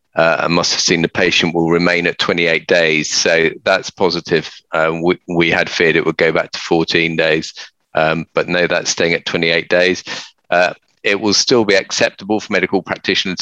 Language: English